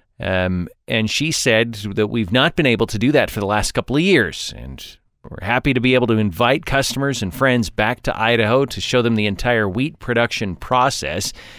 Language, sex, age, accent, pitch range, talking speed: English, male, 40-59, American, 105-130 Hz, 205 wpm